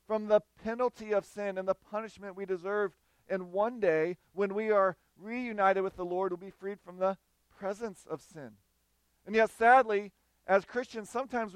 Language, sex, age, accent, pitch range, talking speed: English, male, 40-59, American, 180-215 Hz, 175 wpm